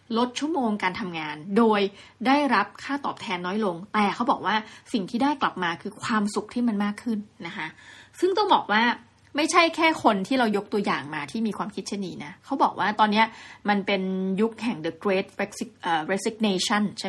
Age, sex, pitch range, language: 20-39, female, 195-250 Hz, Thai